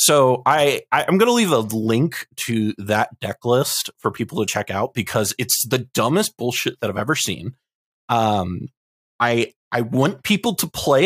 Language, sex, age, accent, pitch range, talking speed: English, male, 30-49, American, 105-145 Hz, 185 wpm